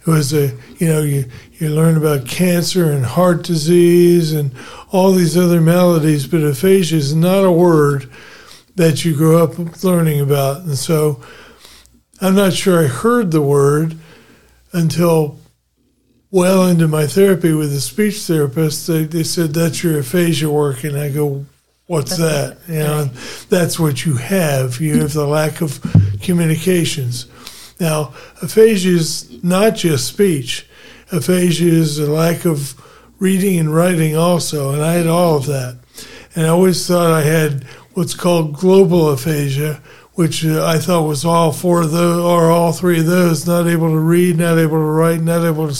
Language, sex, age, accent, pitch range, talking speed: English, male, 40-59, American, 150-175 Hz, 170 wpm